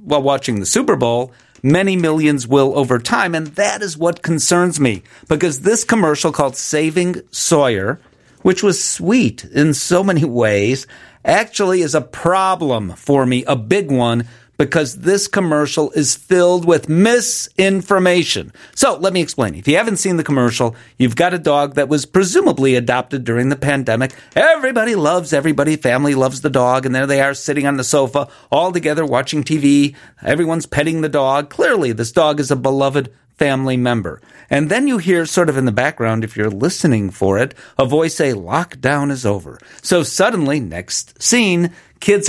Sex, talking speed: male, 175 wpm